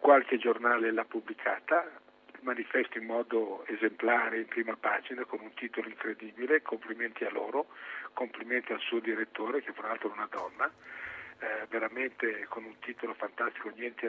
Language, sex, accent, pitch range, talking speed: Italian, male, native, 125-185 Hz, 150 wpm